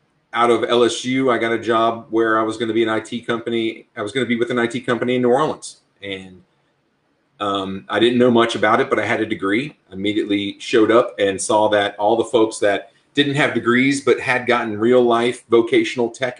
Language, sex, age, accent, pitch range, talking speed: English, male, 30-49, American, 110-145 Hz, 225 wpm